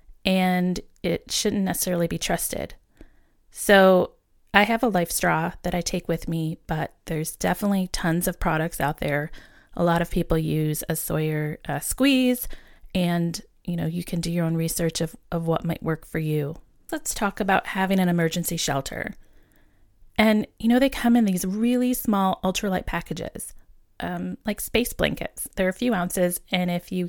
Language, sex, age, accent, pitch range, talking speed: English, female, 30-49, American, 160-195 Hz, 175 wpm